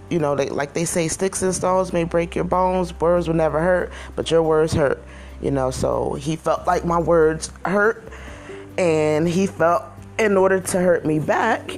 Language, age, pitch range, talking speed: English, 20-39, 125-160 Hz, 195 wpm